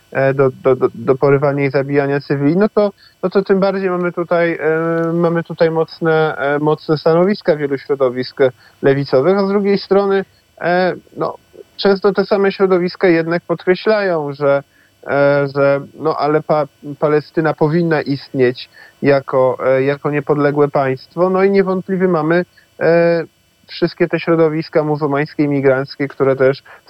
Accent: native